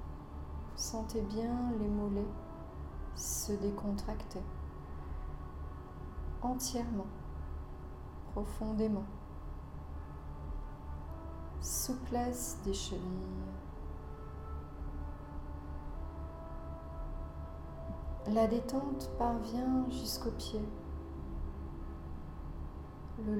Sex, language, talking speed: female, French, 45 wpm